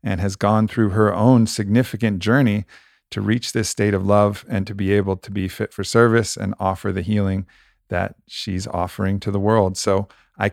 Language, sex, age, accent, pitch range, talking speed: English, male, 40-59, American, 100-125 Hz, 200 wpm